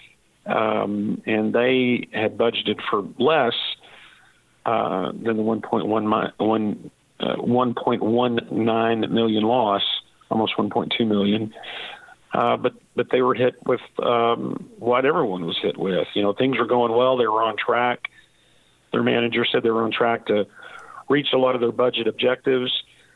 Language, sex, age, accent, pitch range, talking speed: English, male, 50-69, American, 110-120 Hz, 155 wpm